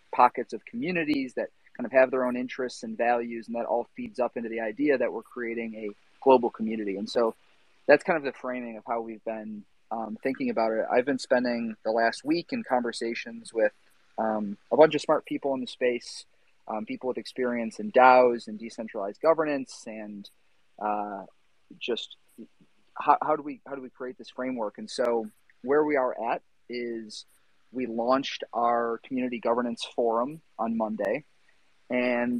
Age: 30-49